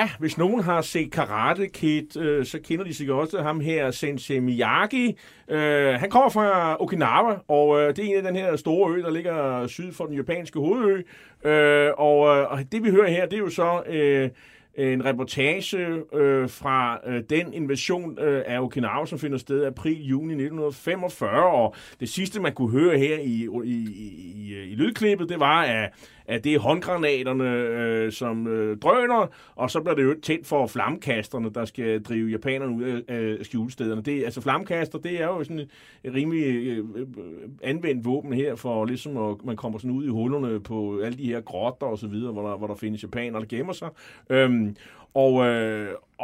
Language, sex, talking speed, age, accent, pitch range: Danish, male, 195 wpm, 30-49, native, 120-160 Hz